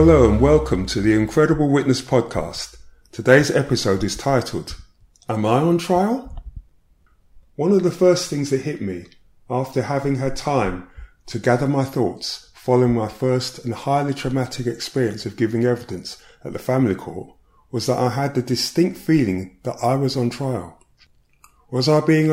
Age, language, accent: 30-49, English, British